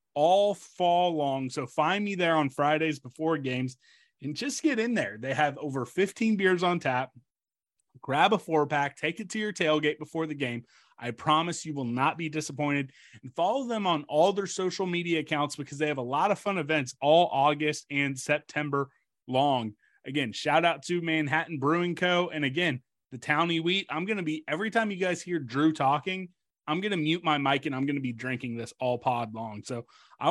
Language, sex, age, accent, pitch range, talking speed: English, male, 30-49, American, 140-170 Hz, 210 wpm